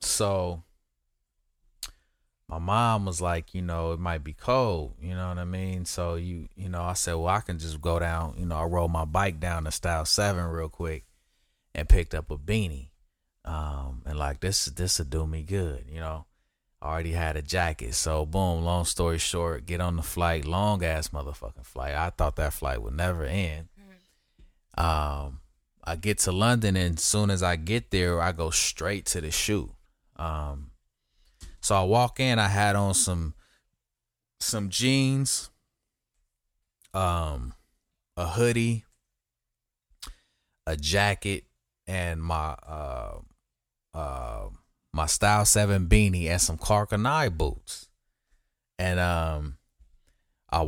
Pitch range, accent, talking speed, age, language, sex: 80-100 Hz, American, 155 wpm, 30-49, English, male